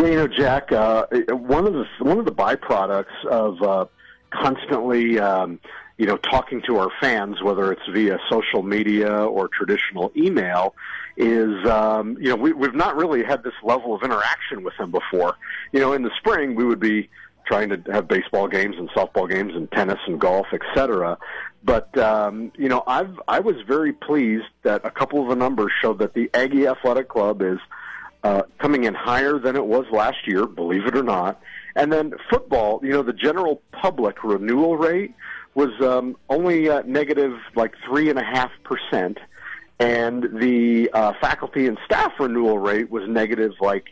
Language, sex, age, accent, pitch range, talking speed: English, male, 50-69, American, 110-140 Hz, 175 wpm